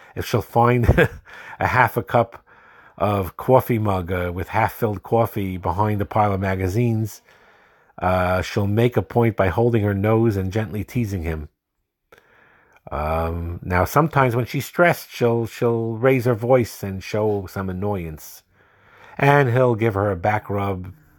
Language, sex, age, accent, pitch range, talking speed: English, male, 50-69, American, 95-120 Hz, 155 wpm